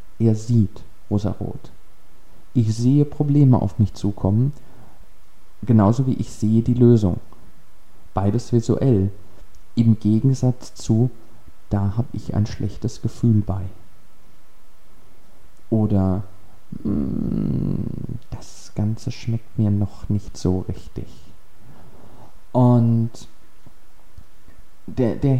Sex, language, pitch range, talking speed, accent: male, German, 100-125 Hz, 90 wpm, German